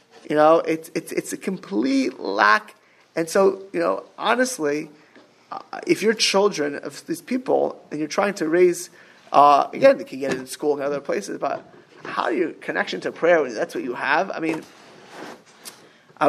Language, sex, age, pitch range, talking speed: English, male, 20-39, 145-205 Hz, 175 wpm